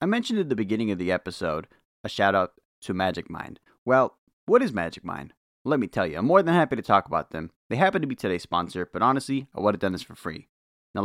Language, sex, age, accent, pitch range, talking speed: English, male, 30-49, American, 90-125 Hz, 250 wpm